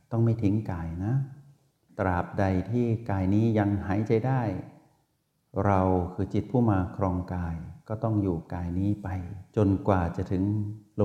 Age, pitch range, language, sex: 60-79, 90-115 Hz, Thai, male